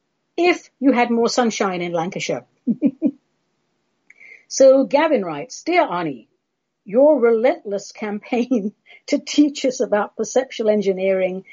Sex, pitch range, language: female, 190-255 Hz, English